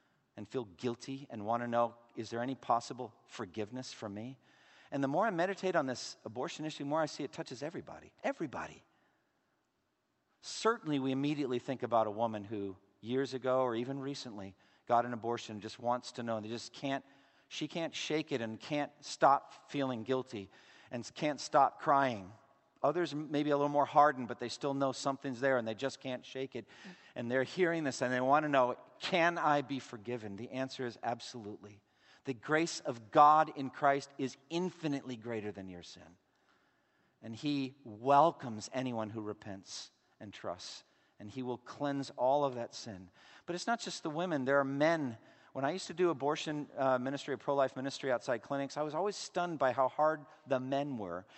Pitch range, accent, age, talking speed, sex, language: 120-150 Hz, American, 50-69, 195 wpm, male, English